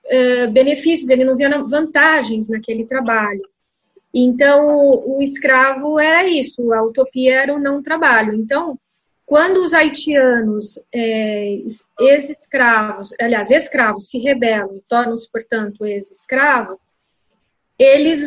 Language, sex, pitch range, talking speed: Portuguese, female, 235-295 Hz, 105 wpm